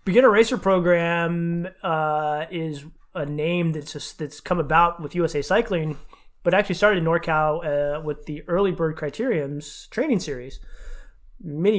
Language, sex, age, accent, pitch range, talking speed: English, male, 20-39, American, 155-190 Hz, 150 wpm